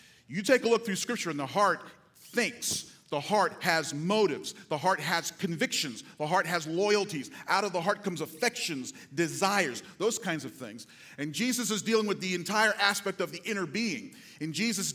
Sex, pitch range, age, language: male, 150-205 Hz, 40-59, English